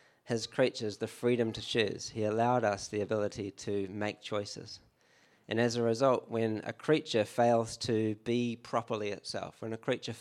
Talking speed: 170 wpm